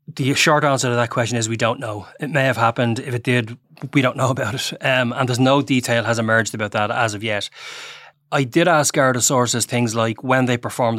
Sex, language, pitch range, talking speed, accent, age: male, English, 115-135 Hz, 240 wpm, Irish, 20-39